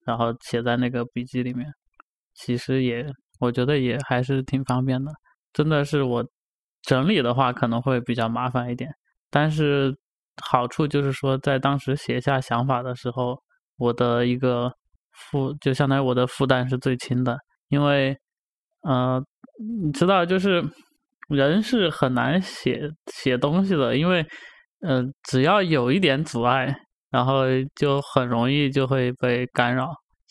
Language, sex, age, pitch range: Chinese, male, 20-39, 125-145 Hz